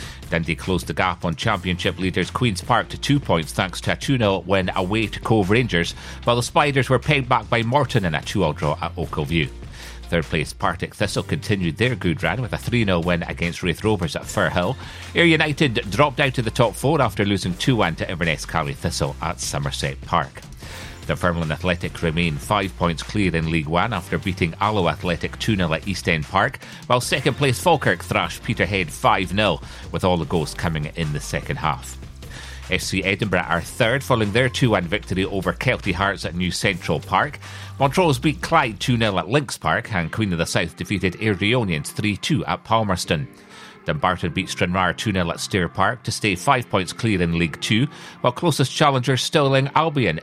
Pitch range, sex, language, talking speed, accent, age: 85-120 Hz, male, English, 190 wpm, British, 40-59